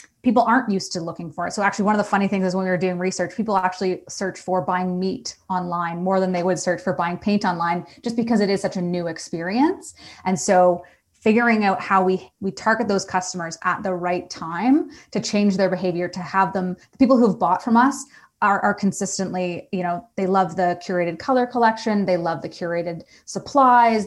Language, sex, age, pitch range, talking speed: English, female, 20-39, 175-200 Hz, 215 wpm